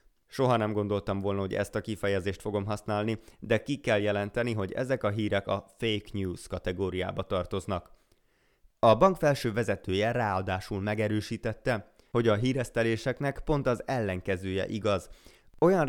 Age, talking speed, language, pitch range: 20-39, 140 wpm, Hungarian, 100-125 Hz